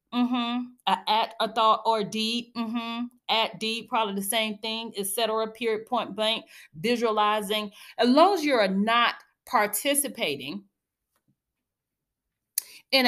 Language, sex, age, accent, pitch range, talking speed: English, female, 30-49, American, 215-255 Hz, 125 wpm